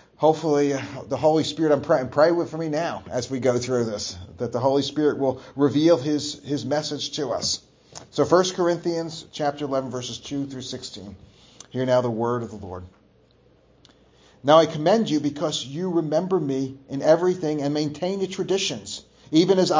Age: 40-59